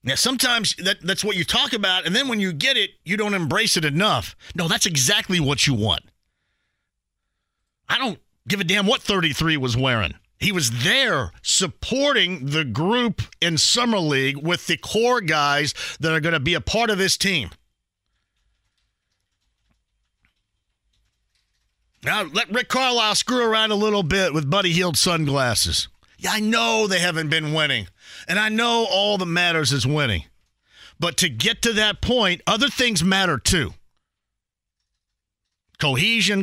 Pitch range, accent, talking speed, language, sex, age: 130-205 Hz, American, 155 wpm, English, male, 40-59